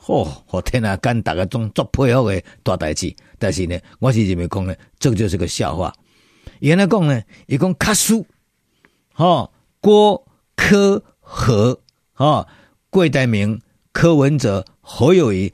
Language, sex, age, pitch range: Chinese, male, 50-69, 110-160 Hz